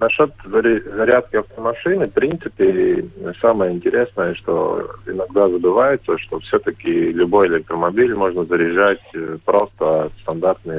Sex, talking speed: male, 100 wpm